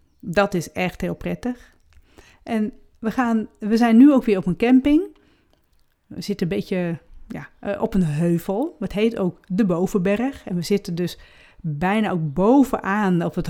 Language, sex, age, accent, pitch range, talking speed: Dutch, female, 40-59, Dutch, 180-240 Hz, 170 wpm